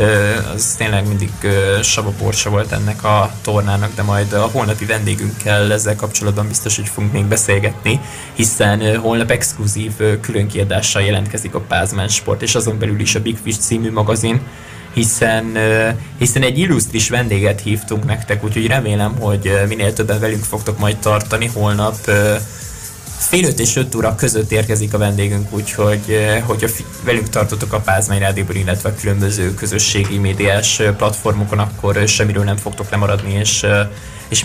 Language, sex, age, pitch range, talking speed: Hungarian, male, 20-39, 100-110 Hz, 155 wpm